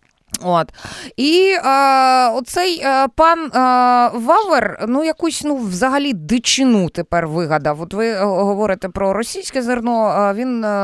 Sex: female